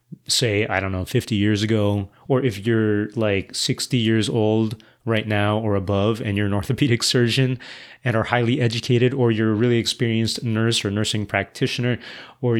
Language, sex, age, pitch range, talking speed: English, male, 30-49, 110-140 Hz, 175 wpm